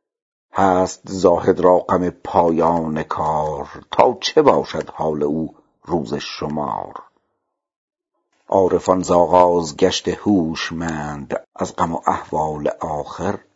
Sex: male